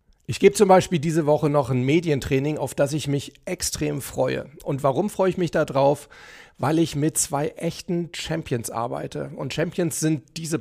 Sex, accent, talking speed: male, German, 185 wpm